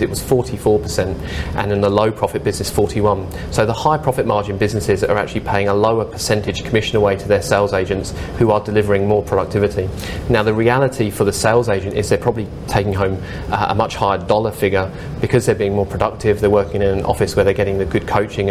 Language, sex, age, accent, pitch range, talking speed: English, male, 30-49, British, 100-110 Hz, 215 wpm